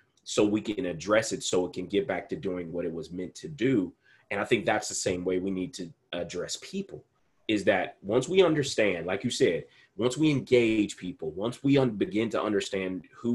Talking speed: 220 wpm